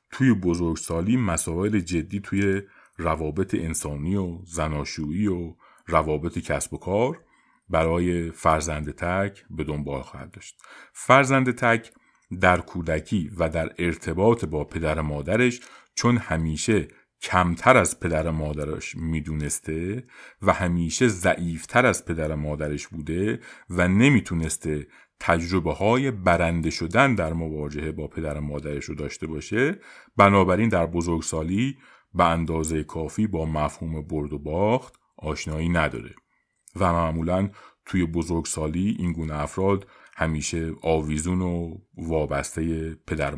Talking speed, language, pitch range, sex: 115 wpm, Persian, 80-95 Hz, male